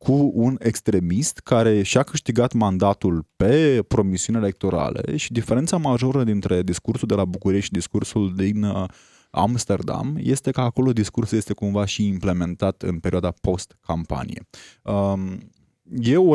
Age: 20-39